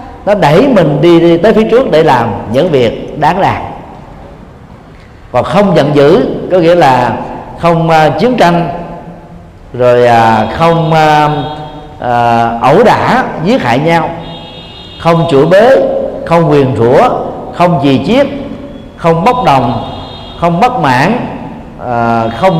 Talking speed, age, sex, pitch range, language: 140 wpm, 50-69, male, 130-190 Hz, Vietnamese